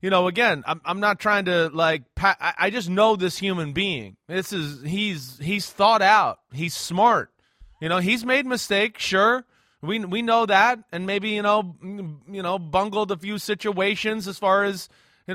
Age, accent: 30-49, American